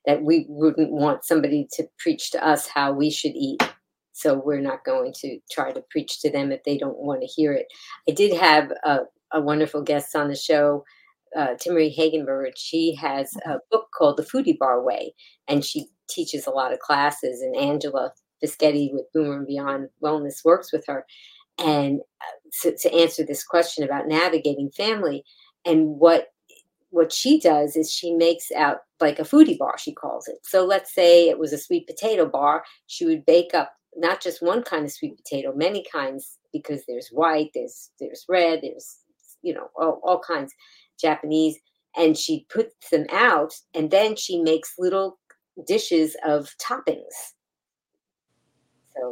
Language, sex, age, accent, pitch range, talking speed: English, female, 40-59, American, 145-180 Hz, 175 wpm